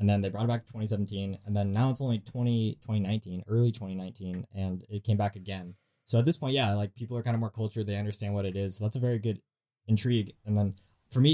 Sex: male